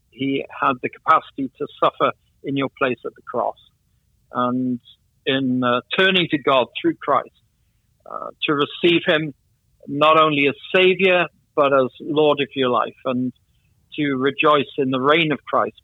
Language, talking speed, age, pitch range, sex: English, 160 wpm, 60-79, 120-150 Hz, male